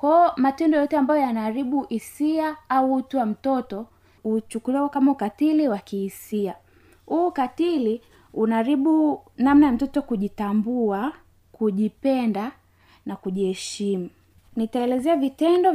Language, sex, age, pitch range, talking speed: Swahili, female, 20-39, 220-290 Hz, 105 wpm